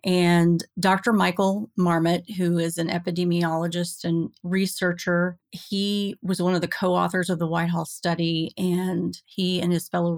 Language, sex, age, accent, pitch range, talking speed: English, female, 30-49, American, 170-190 Hz, 145 wpm